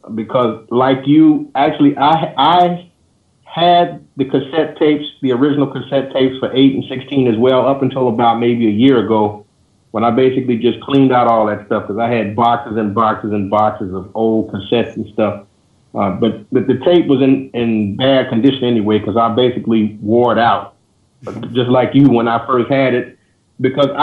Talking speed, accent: 185 wpm, American